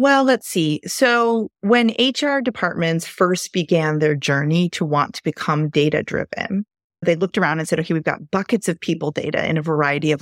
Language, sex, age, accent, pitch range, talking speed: English, female, 30-49, American, 160-200 Hz, 190 wpm